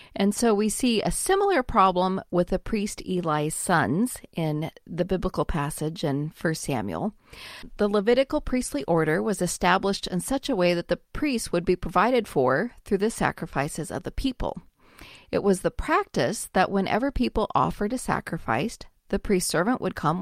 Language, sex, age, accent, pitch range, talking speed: English, female, 40-59, American, 170-235 Hz, 170 wpm